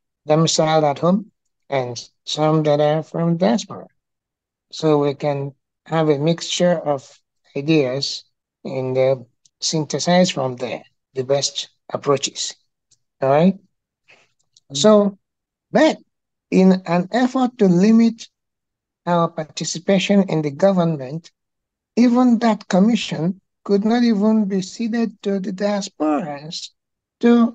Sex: male